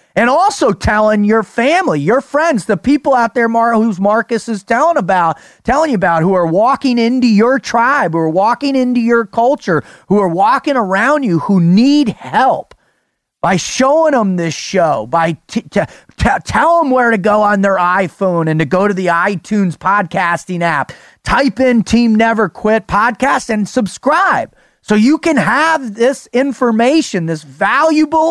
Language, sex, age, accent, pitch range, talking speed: English, male, 30-49, American, 205-270 Hz, 170 wpm